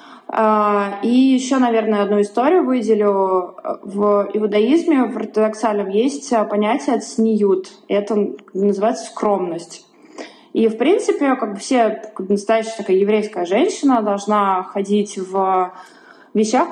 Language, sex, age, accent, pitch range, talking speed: Russian, female, 20-39, native, 205-250 Hz, 110 wpm